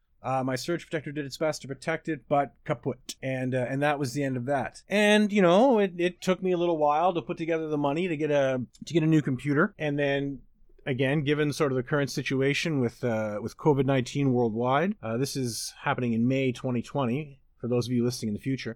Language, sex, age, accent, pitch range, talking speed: English, male, 30-49, American, 125-160 Hz, 235 wpm